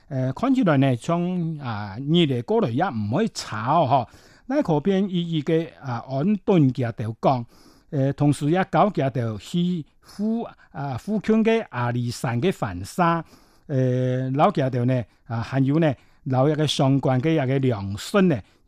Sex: male